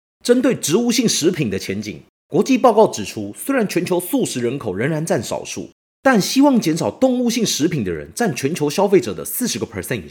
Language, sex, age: Chinese, male, 30-49